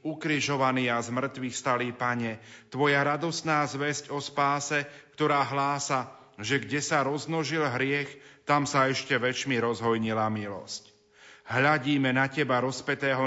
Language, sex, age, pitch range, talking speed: Slovak, male, 40-59, 125-150 Hz, 120 wpm